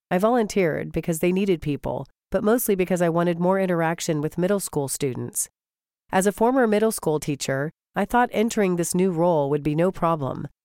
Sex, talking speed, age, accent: female, 185 wpm, 40-59, American